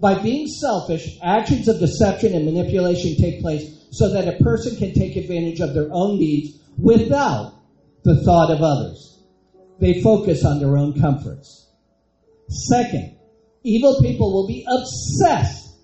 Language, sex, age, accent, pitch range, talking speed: English, male, 50-69, American, 140-210 Hz, 145 wpm